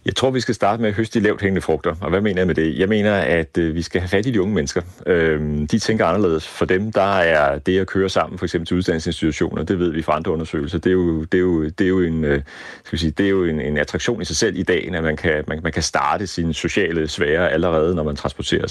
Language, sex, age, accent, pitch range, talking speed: Danish, male, 30-49, native, 85-100 Hz, 265 wpm